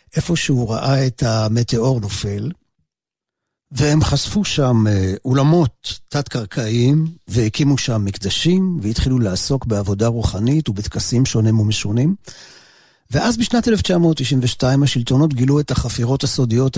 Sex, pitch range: male, 110-145 Hz